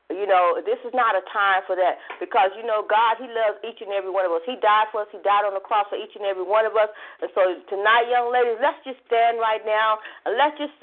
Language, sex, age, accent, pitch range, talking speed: English, female, 40-59, American, 190-225 Hz, 275 wpm